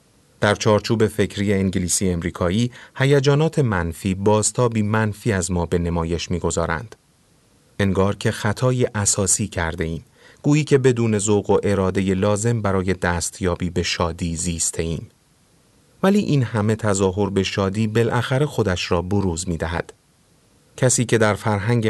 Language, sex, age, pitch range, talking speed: Persian, male, 30-49, 90-115 Hz, 135 wpm